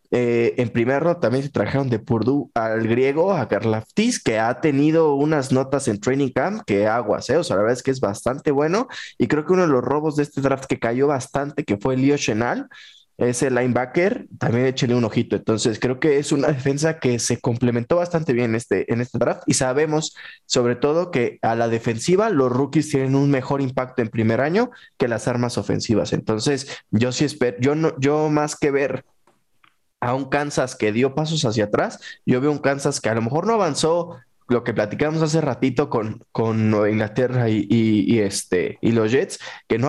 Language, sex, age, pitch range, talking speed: Spanish, male, 20-39, 120-150 Hz, 210 wpm